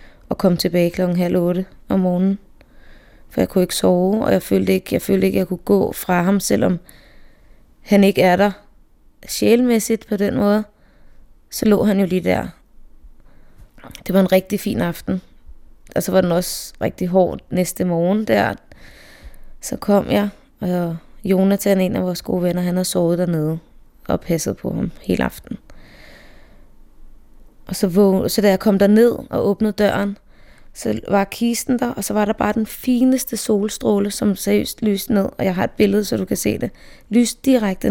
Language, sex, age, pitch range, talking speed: Danish, female, 20-39, 180-210 Hz, 180 wpm